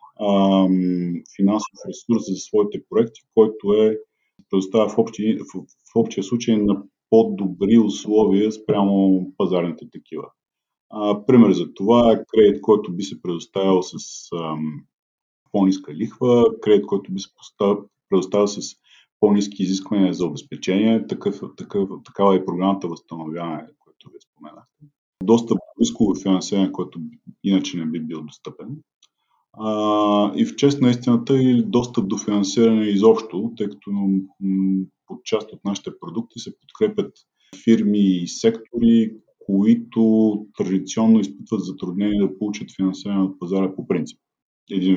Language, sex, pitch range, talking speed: Bulgarian, male, 95-115 Hz, 125 wpm